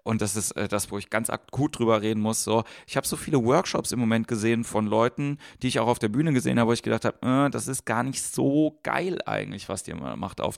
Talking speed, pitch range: 255 wpm, 105-125 Hz